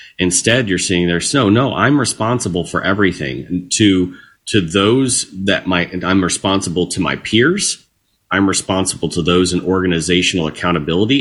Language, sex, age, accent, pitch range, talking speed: English, male, 30-49, American, 85-105 Hz, 155 wpm